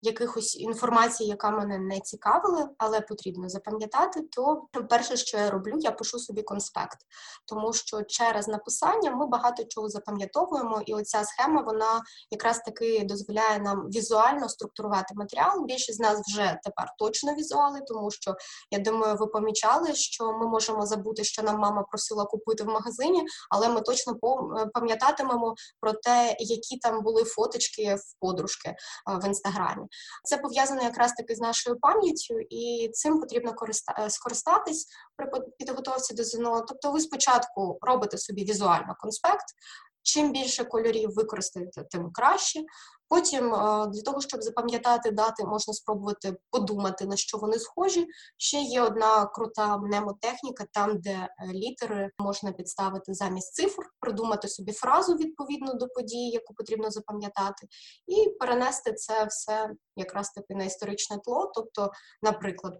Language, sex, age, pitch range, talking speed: Ukrainian, female, 20-39, 210-255 Hz, 140 wpm